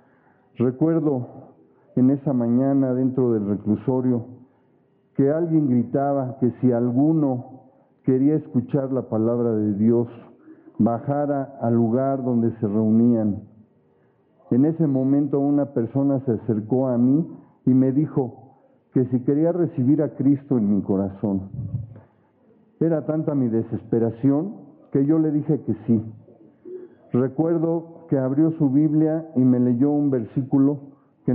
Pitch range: 115-145 Hz